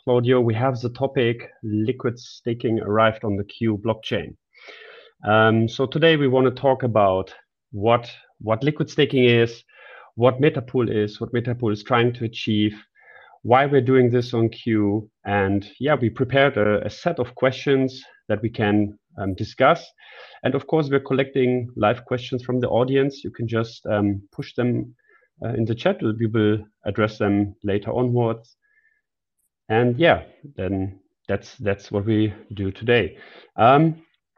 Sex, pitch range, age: male, 110-130 Hz, 30-49